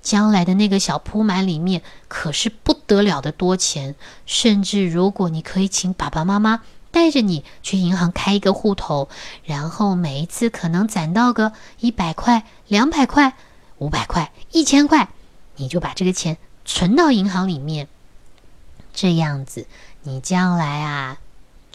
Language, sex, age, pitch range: Chinese, female, 20-39, 155-215 Hz